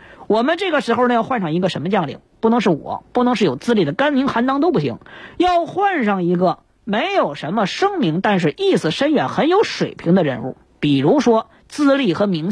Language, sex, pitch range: Chinese, female, 180-275 Hz